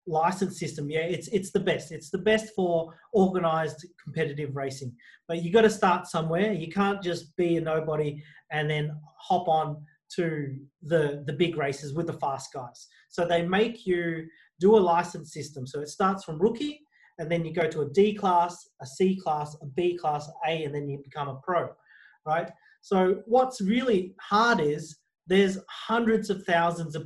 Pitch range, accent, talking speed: 155-200 Hz, Australian, 185 wpm